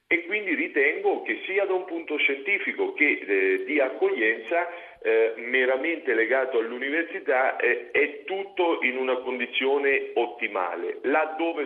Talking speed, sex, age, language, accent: 125 wpm, male, 50-69, Italian, native